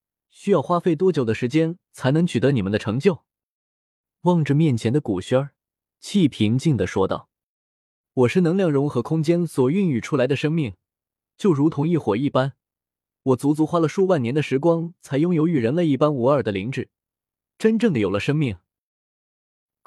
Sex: male